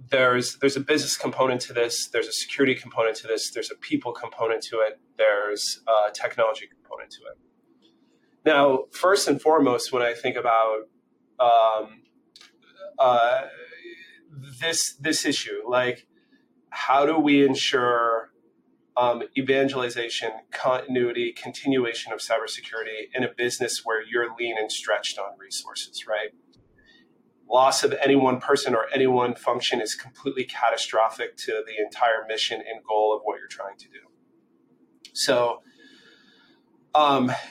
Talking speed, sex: 140 wpm, male